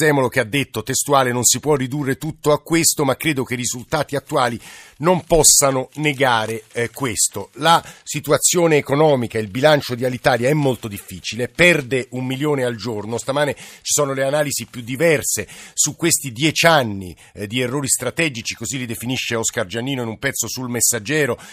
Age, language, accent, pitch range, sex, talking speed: 50-69, Italian, native, 125-150 Hz, male, 180 wpm